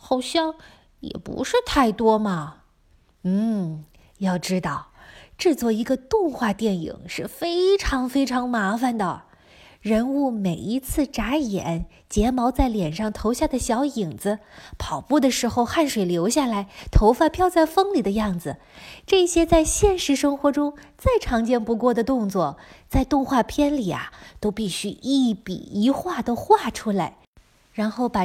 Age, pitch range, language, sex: 20-39, 205-285 Hz, Chinese, female